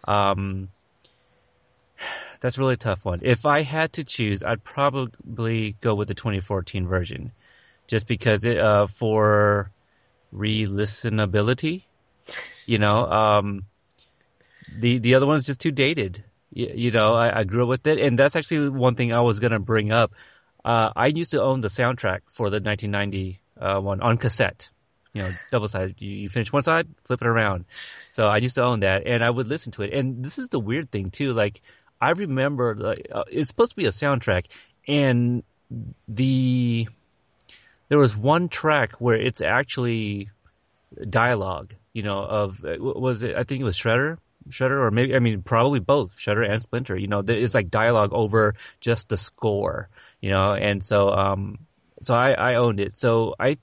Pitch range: 105-130 Hz